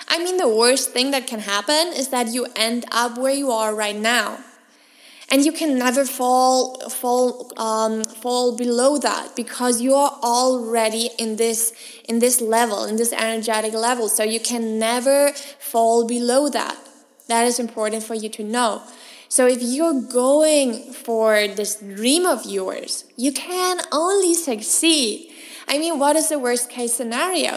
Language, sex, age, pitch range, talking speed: English, female, 20-39, 230-290 Hz, 165 wpm